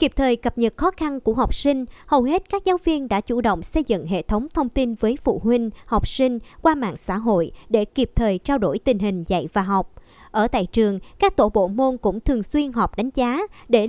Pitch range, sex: 210-280 Hz, male